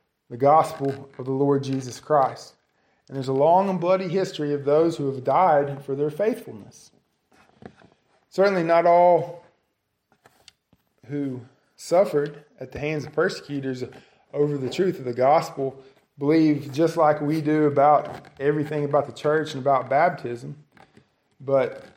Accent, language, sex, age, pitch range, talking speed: American, English, male, 20-39, 135-170 Hz, 140 wpm